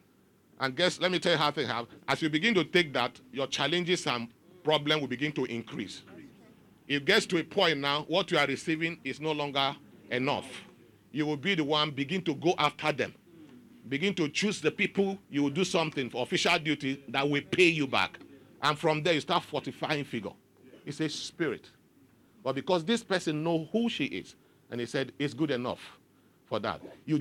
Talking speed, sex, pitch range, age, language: 200 wpm, male, 140-205 Hz, 40-59, English